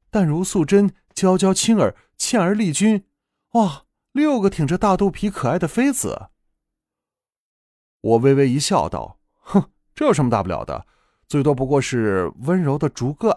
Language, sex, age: Chinese, male, 30-49